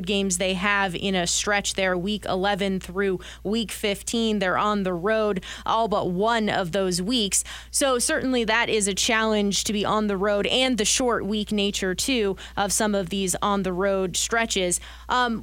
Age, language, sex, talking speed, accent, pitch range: 20-39, English, female, 185 wpm, American, 190-225 Hz